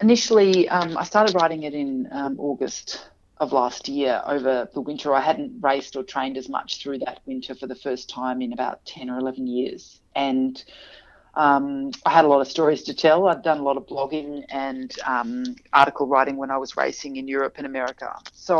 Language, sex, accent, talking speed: English, female, Australian, 205 wpm